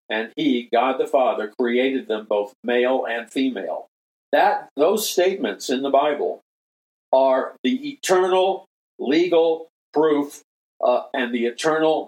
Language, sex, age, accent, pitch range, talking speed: English, male, 50-69, American, 120-145 Hz, 130 wpm